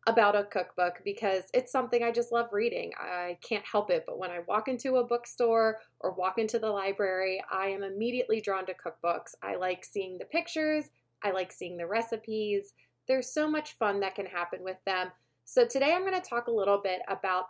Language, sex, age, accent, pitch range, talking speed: English, female, 20-39, American, 190-250 Hz, 205 wpm